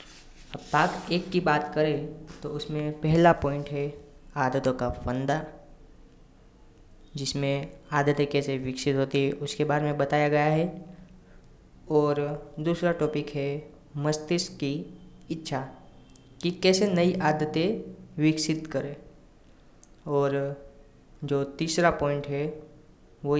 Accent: native